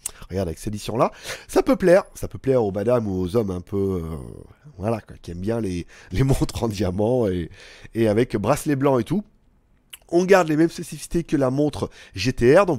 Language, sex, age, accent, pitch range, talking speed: French, male, 30-49, French, 115-160 Hz, 215 wpm